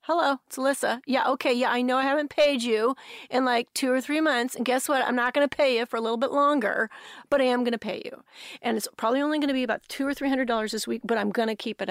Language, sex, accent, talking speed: English, female, American, 280 wpm